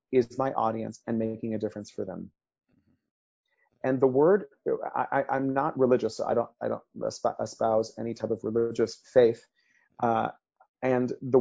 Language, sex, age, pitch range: English, male, 30-49, 120-150 Hz